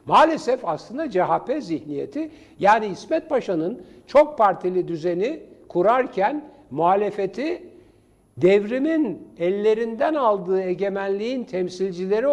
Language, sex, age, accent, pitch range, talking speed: Turkish, male, 60-79, native, 160-250 Hz, 85 wpm